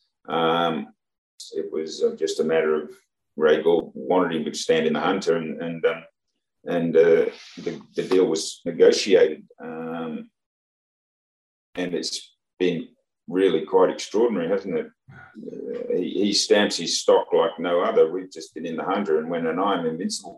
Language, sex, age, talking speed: English, male, 40-59, 160 wpm